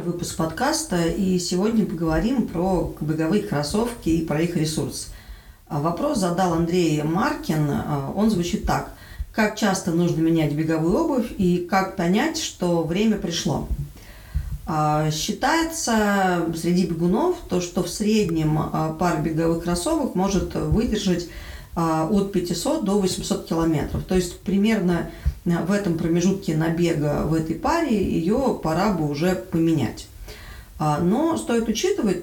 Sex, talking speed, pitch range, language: female, 125 wpm, 165-200 Hz, Russian